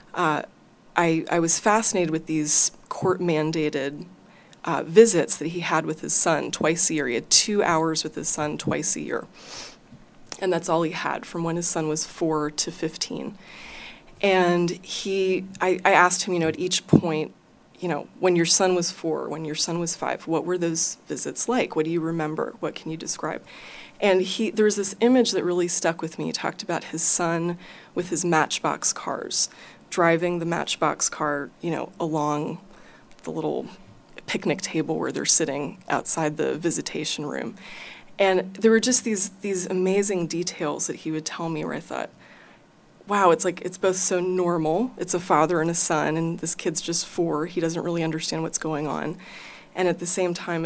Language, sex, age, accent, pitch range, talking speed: English, female, 30-49, American, 160-185 Hz, 190 wpm